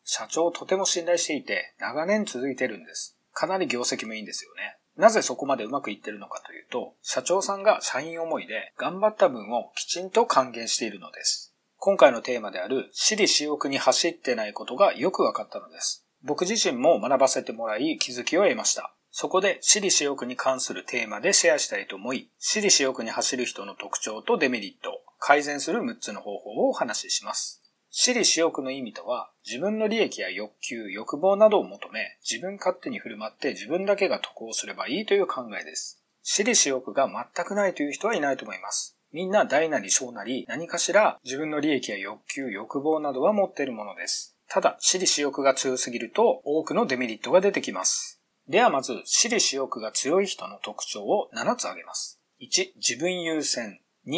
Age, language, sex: 40-59, Japanese, male